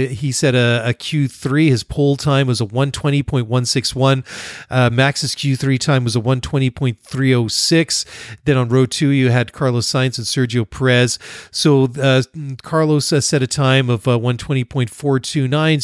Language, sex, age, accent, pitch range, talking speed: English, male, 40-59, American, 115-140 Hz, 135 wpm